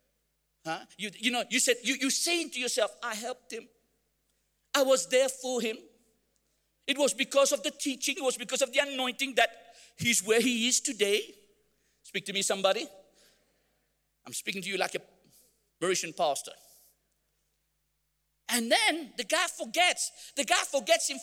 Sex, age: male, 50-69